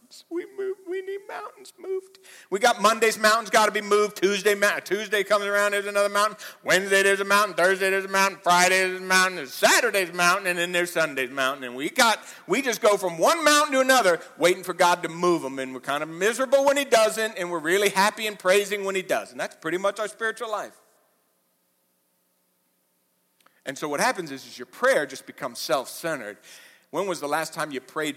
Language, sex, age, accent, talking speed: English, male, 60-79, American, 215 wpm